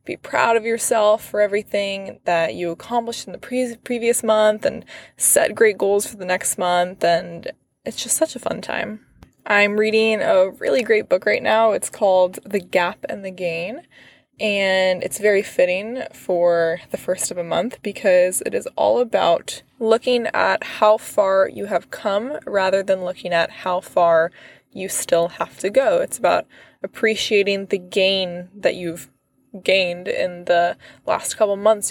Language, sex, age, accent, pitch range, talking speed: English, female, 20-39, American, 180-220 Hz, 165 wpm